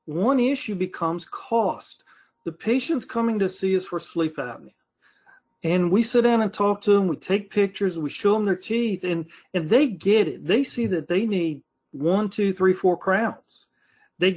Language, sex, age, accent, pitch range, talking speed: English, male, 40-59, American, 170-220 Hz, 190 wpm